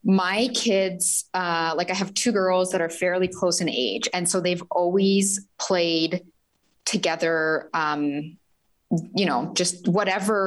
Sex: female